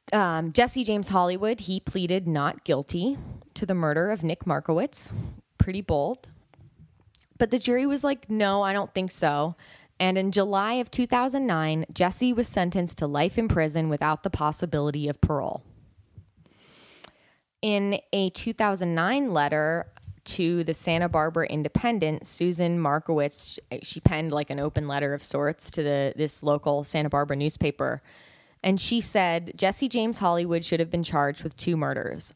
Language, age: English, 20-39